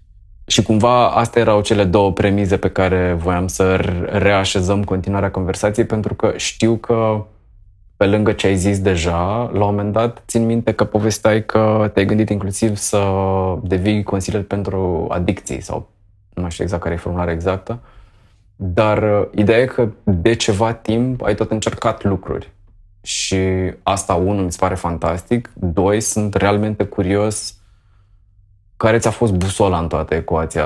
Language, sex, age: Romanian, male, 20-39